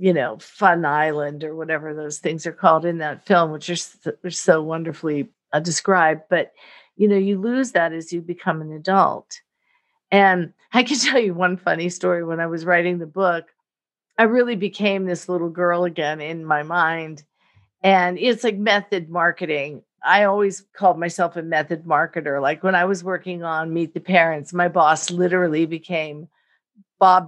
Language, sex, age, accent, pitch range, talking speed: English, female, 50-69, American, 170-225 Hz, 175 wpm